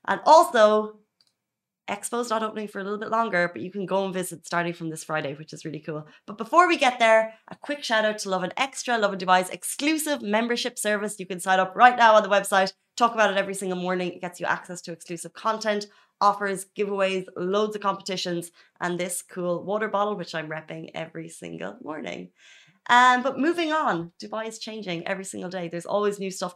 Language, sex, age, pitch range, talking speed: Arabic, female, 20-39, 175-215 Hz, 215 wpm